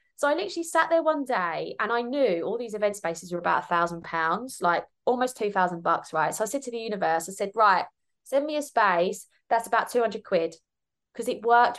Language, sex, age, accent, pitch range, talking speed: English, female, 20-39, British, 190-250 Hz, 225 wpm